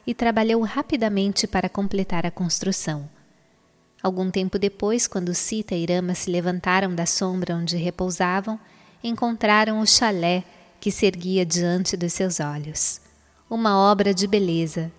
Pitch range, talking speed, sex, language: 180-210 Hz, 135 wpm, female, Portuguese